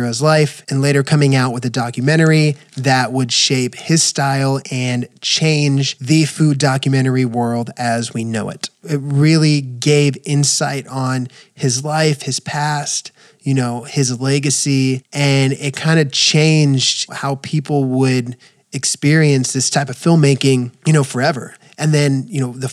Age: 20-39